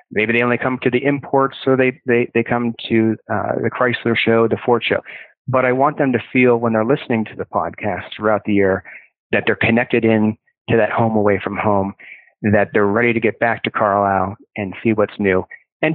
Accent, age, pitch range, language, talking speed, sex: American, 30-49, 110-125 Hz, English, 220 wpm, male